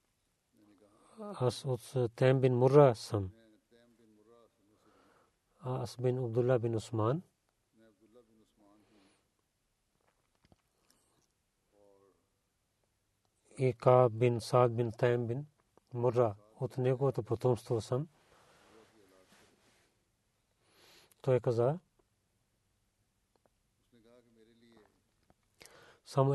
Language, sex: Bulgarian, male